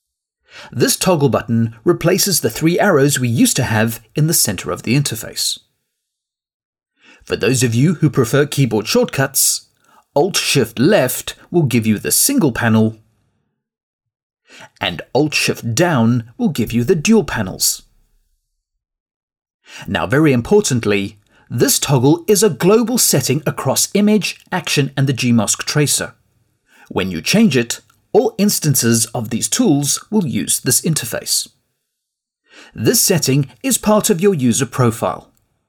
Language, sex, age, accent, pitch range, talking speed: English, male, 40-59, British, 115-185 Hz, 130 wpm